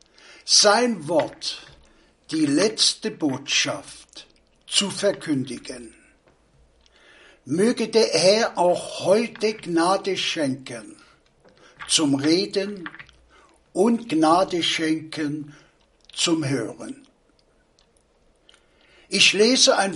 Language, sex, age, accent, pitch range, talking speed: German, male, 60-79, German, 170-225 Hz, 70 wpm